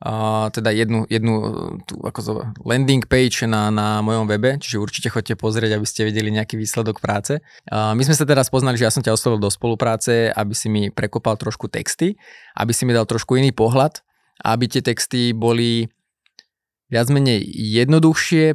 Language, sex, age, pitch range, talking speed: Slovak, male, 20-39, 110-125 Hz, 180 wpm